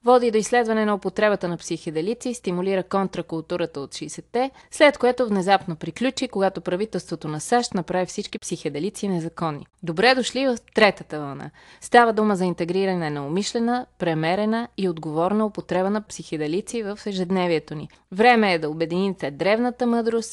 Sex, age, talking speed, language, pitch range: female, 20-39, 145 wpm, Bulgarian, 170-220 Hz